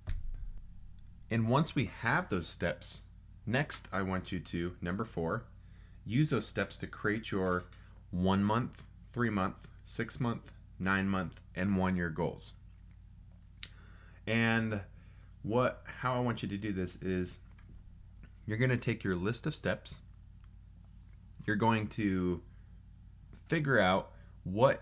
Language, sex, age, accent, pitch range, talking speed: English, male, 30-49, American, 90-105 Hz, 120 wpm